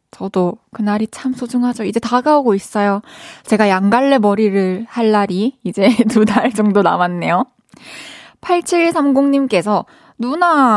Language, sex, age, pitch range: Korean, female, 20-39, 195-255 Hz